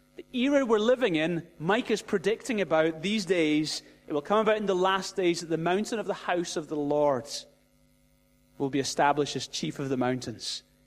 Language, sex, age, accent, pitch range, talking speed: English, male, 30-49, British, 135-170 Hz, 195 wpm